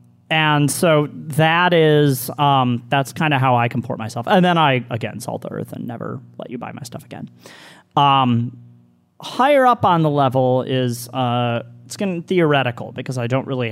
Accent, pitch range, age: American, 120-160 Hz, 30-49